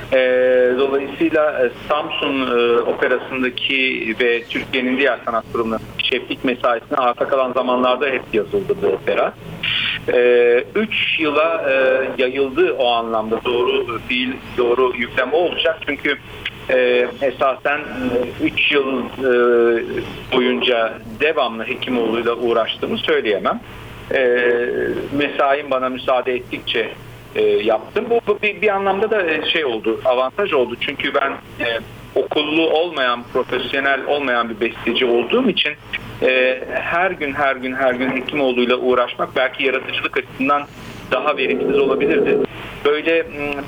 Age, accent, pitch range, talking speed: 50-69, native, 125-155 Hz, 120 wpm